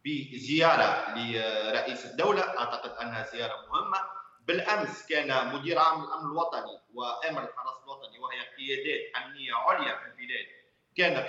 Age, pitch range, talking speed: 40-59, 140-215 Hz, 120 wpm